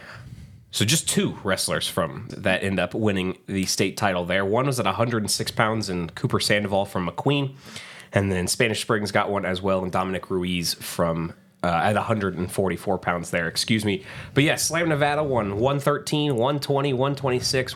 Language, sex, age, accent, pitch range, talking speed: English, male, 20-39, American, 95-130 Hz, 170 wpm